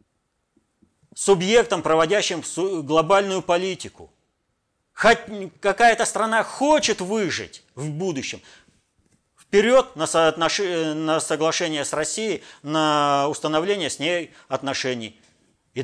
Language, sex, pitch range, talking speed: Russian, male, 125-195 Hz, 90 wpm